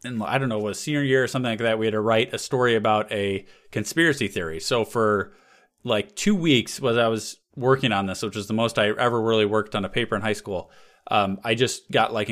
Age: 30-49